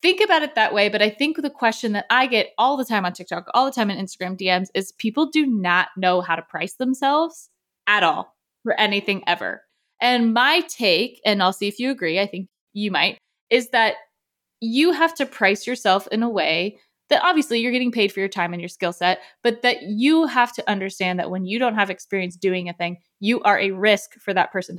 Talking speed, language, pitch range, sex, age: 230 wpm, English, 190-255 Hz, female, 20-39